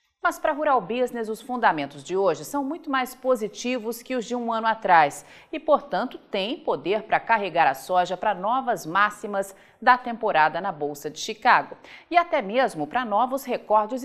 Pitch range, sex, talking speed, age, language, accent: 195-260 Hz, female, 180 wpm, 40-59, Portuguese, Brazilian